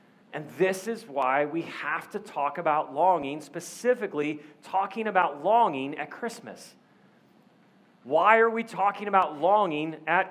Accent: American